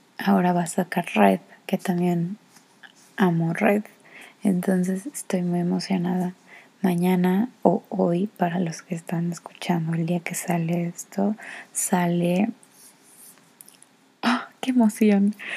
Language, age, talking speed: Spanish, 20-39, 115 wpm